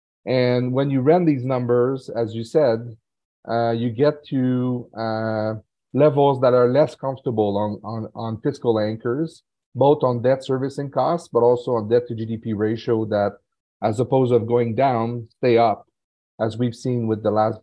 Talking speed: 170 wpm